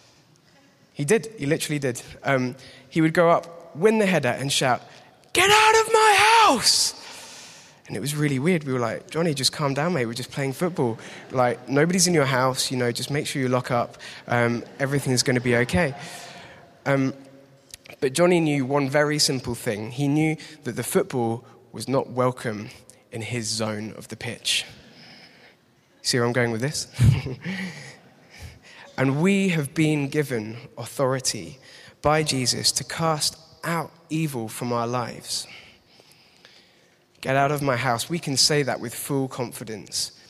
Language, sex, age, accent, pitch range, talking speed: English, male, 20-39, British, 120-155 Hz, 165 wpm